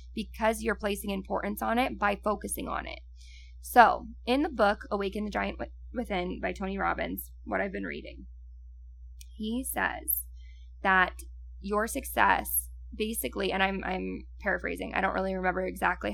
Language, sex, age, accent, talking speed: English, female, 10-29, American, 150 wpm